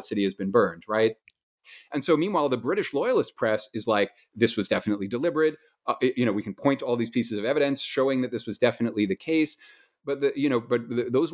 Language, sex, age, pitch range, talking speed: English, male, 30-49, 105-140 Hz, 220 wpm